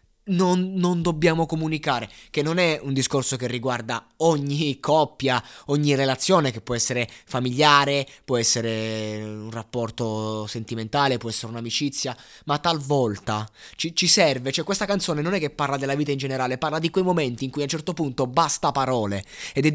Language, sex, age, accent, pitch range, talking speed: Italian, male, 20-39, native, 110-155 Hz, 175 wpm